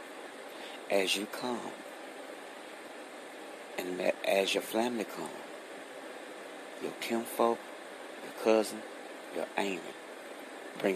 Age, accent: 60-79, American